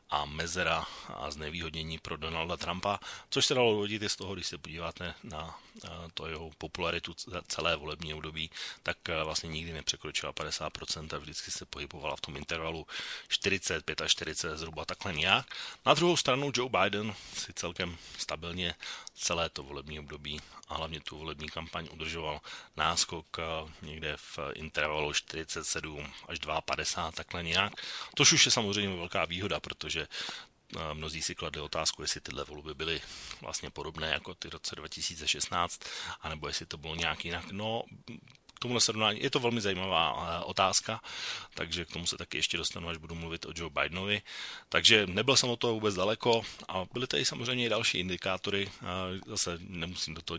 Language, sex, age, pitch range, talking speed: Slovak, male, 30-49, 80-95 Hz, 165 wpm